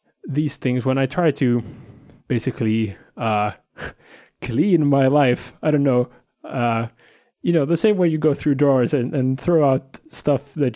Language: English